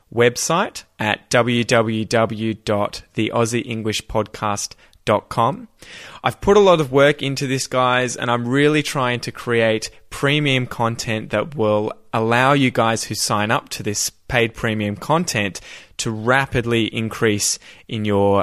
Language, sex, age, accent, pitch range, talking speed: English, male, 20-39, Australian, 110-135 Hz, 125 wpm